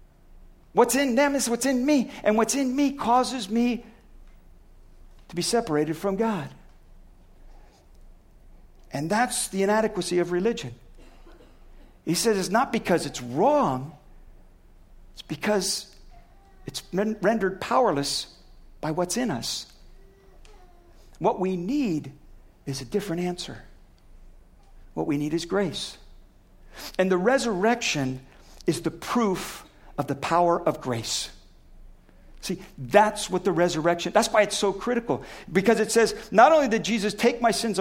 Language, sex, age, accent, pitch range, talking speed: English, male, 50-69, American, 175-245 Hz, 130 wpm